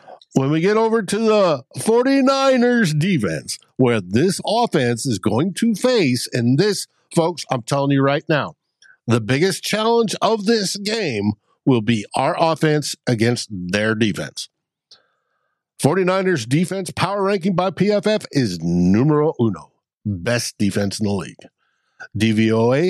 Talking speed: 135 wpm